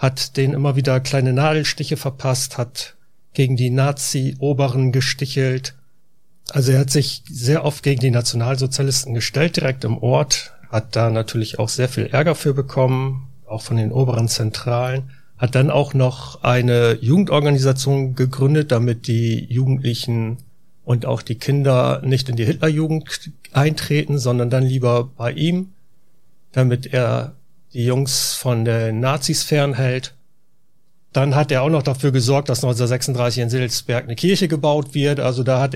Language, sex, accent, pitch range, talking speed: German, male, German, 120-145 Hz, 150 wpm